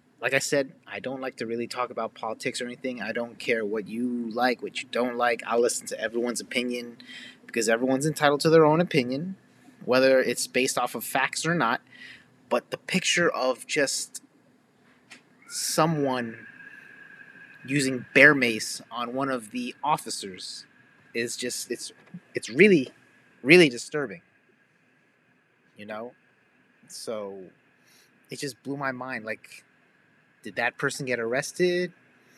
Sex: male